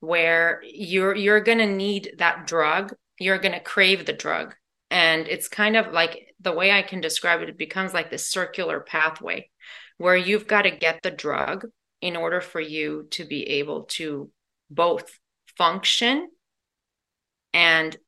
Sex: female